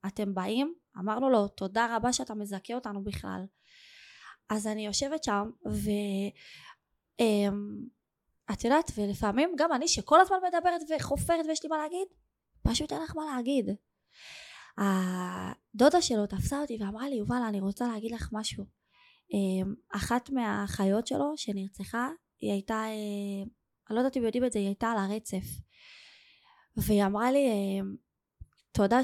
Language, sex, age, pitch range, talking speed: Hebrew, female, 20-39, 205-290 Hz, 130 wpm